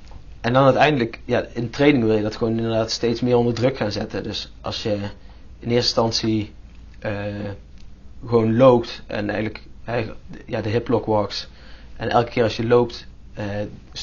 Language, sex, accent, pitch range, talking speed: Dutch, male, Dutch, 100-115 Hz, 165 wpm